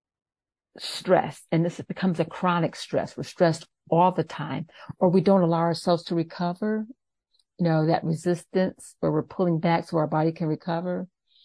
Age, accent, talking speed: 50-69, American, 170 wpm